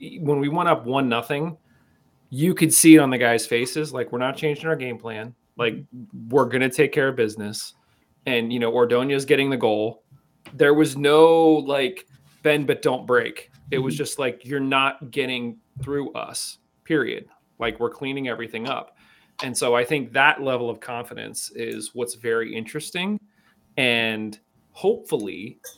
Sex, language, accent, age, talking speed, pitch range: male, English, American, 30-49, 170 wpm, 120-155 Hz